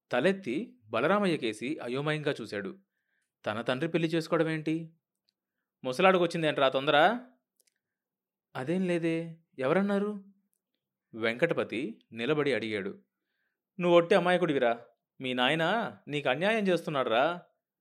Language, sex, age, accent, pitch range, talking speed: Telugu, male, 30-49, native, 125-175 Hz, 90 wpm